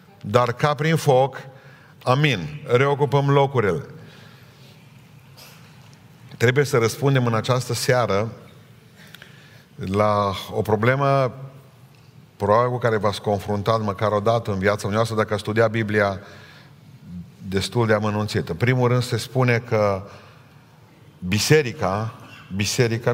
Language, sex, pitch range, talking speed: Romanian, male, 115-145 Hz, 105 wpm